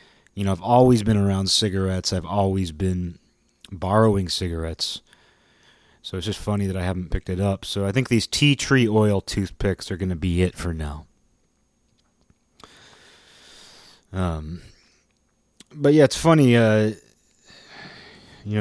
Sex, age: male, 30-49